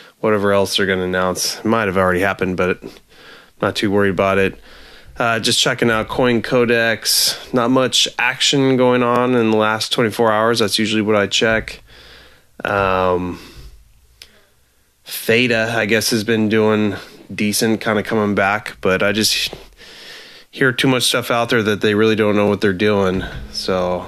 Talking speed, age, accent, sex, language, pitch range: 170 wpm, 20-39, American, male, English, 95-115 Hz